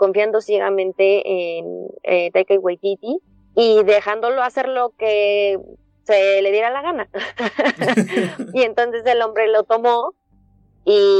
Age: 20-39